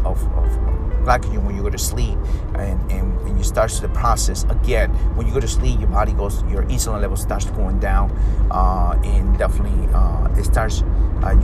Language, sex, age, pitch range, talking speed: English, male, 30-49, 85-100 Hz, 190 wpm